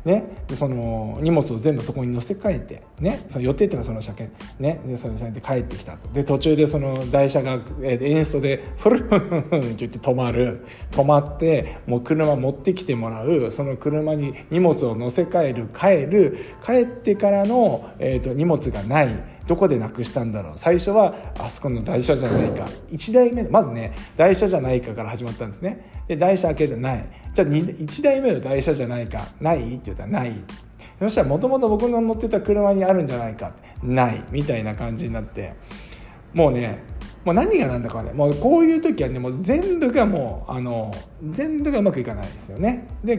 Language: Japanese